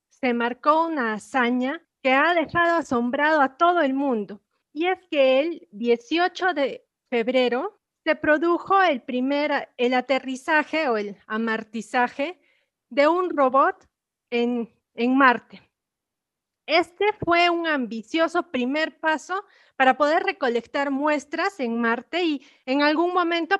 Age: 30-49